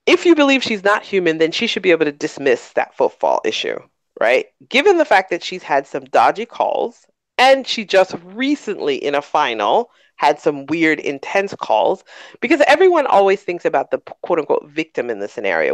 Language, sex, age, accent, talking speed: English, female, 40-59, American, 185 wpm